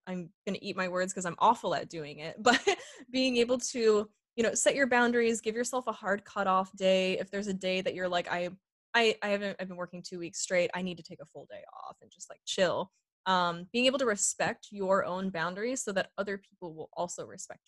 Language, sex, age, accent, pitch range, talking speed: English, female, 20-39, American, 175-230 Hz, 240 wpm